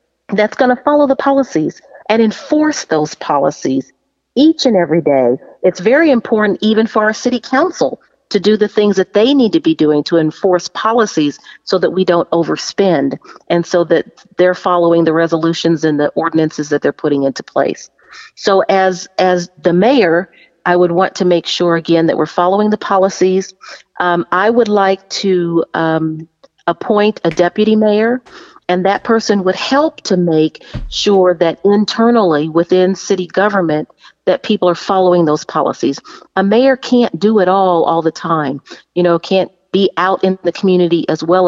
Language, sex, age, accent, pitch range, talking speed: English, female, 40-59, American, 165-210 Hz, 175 wpm